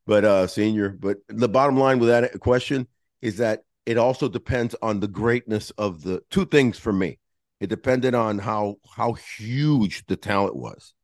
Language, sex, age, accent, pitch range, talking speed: English, male, 50-69, American, 100-130 Hz, 180 wpm